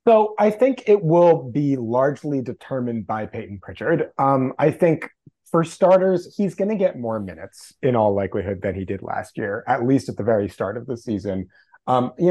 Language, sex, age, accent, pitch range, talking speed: English, male, 30-49, American, 105-130 Hz, 200 wpm